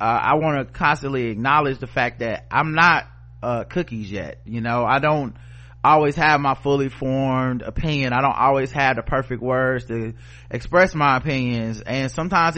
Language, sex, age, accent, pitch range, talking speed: English, male, 30-49, American, 120-145 Hz, 175 wpm